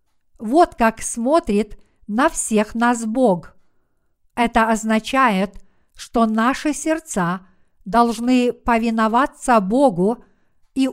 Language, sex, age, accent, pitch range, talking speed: Russian, female, 50-69, native, 215-260 Hz, 90 wpm